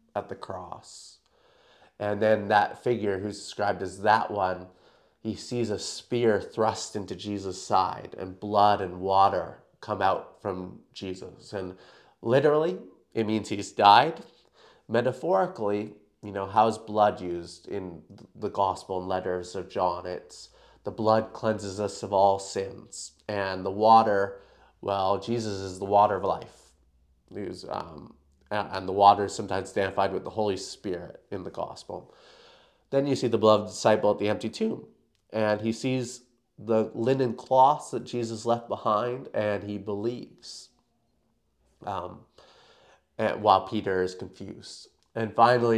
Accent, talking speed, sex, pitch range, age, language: American, 145 wpm, male, 95-110 Hz, 30-49, English